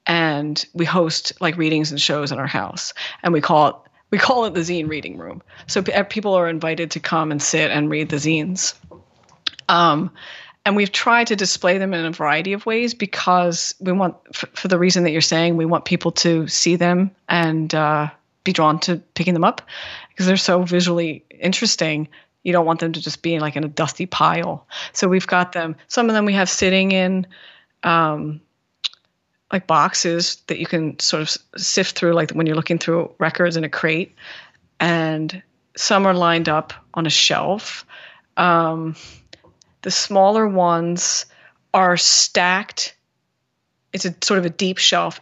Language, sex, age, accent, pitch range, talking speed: English, female, 30-49, American, 155-185 Hz, 180 wpm